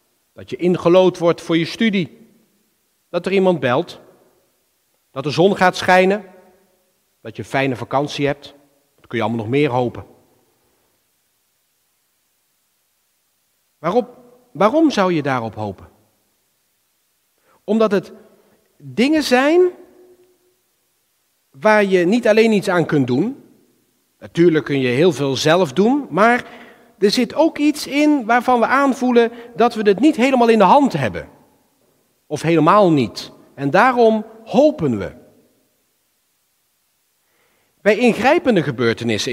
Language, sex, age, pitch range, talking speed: Dutch, male, 40-59, 155-245 Hz, 125 wpm